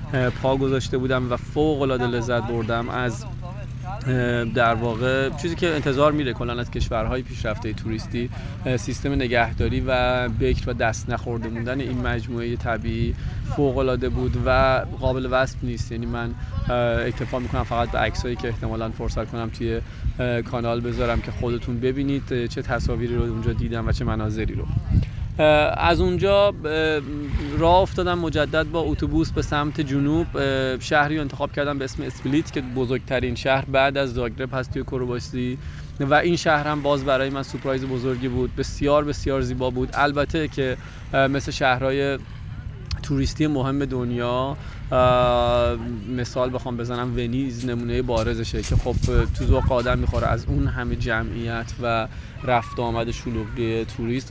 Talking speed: 145 wpm